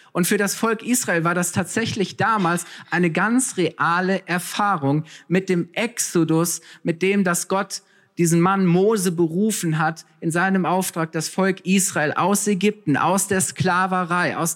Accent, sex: German, male